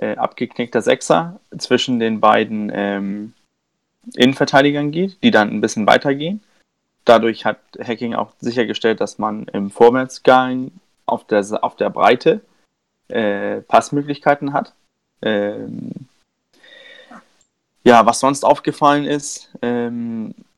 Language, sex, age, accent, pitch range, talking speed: German, male, 20-39, German, 115-145 Hz, 110 wpm